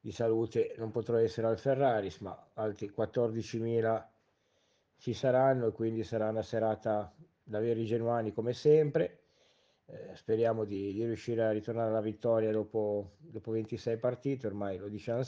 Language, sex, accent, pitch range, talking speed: Italian, male, native, 110-125 Hz, 150 wpm